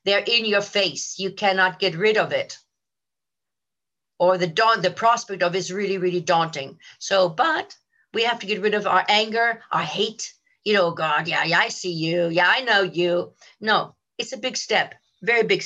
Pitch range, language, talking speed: 195-270 Hz, English, 200 wpm